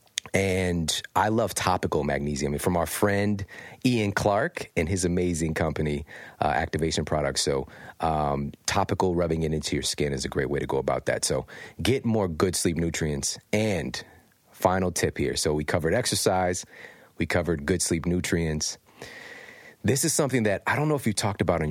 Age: 30-49